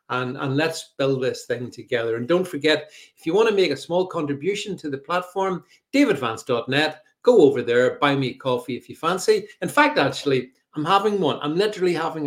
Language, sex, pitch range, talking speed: English, male, 135-185 Hz, 200 wpm